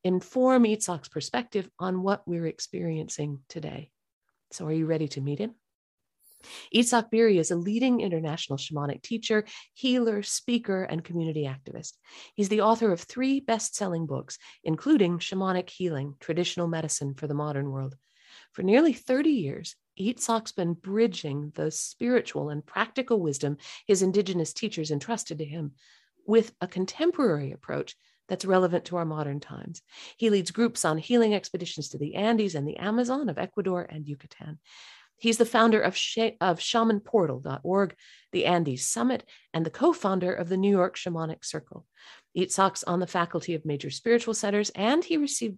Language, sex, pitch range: English, female, 160-220 Hz